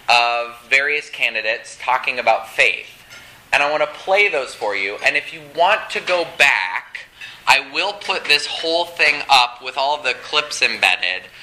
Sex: male